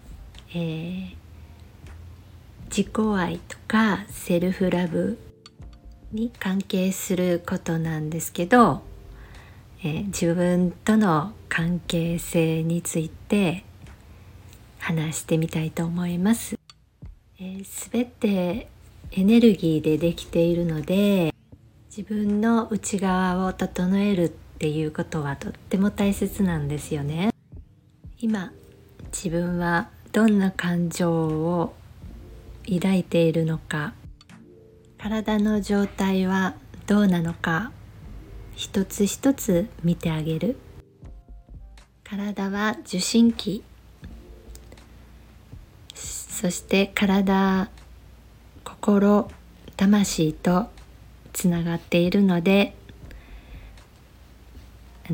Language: Japanese